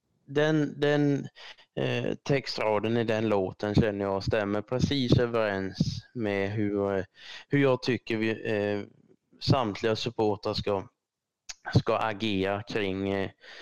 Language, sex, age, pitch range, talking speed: Swedish, male, 20-39, 105-125 Hz, 100 wpm